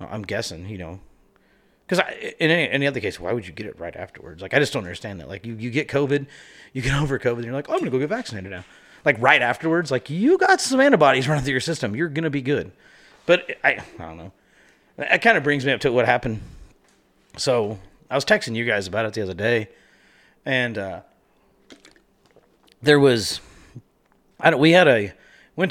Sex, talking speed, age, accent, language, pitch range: male, 220 wpm, 30-49, American, English, 100-145 Hz